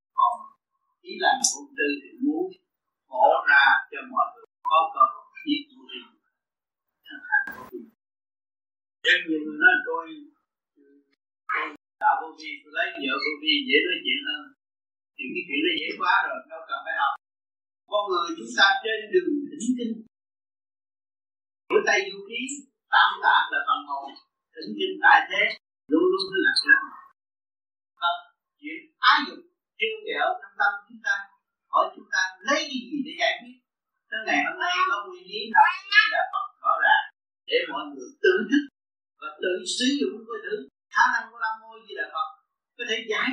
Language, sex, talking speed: Vietnamese, male, 90 wpm